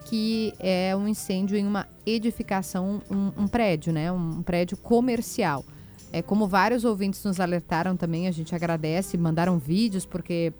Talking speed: 155 wpm